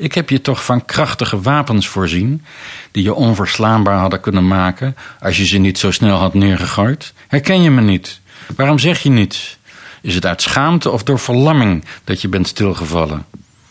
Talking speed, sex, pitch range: 180 wpm, male, 90-115 Hz